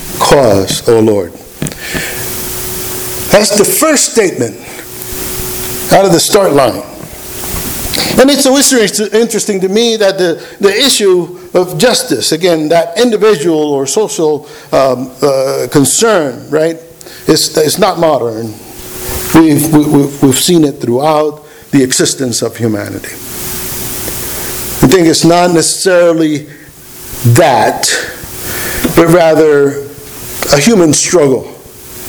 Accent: American